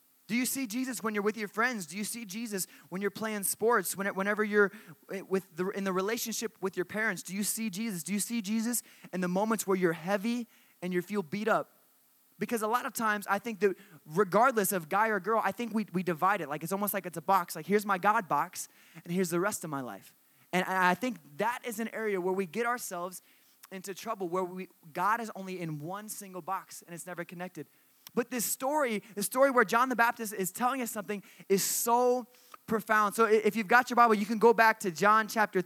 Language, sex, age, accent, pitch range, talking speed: English, male, 20-39, American, 180-225 Hz, 235 wpm